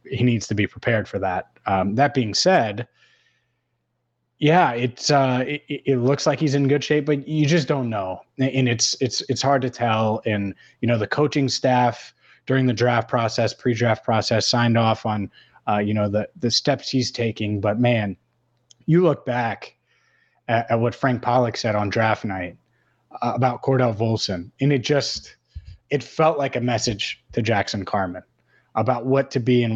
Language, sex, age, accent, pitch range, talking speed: English, male, 20-39, American, 110-135 Hz, 185 wpm